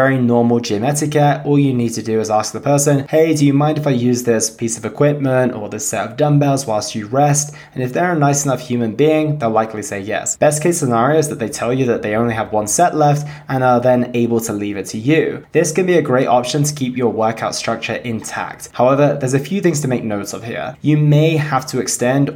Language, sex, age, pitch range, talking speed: English, male, 20-39, 115-145 Hz, 255 wpm